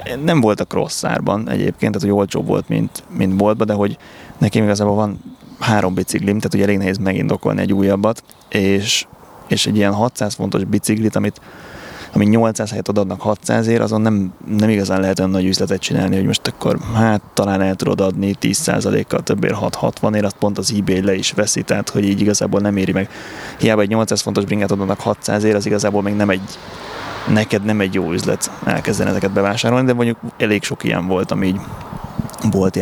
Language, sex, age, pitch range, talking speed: Hungarian, male, 20-39, 95-110 Hz, 190 wpm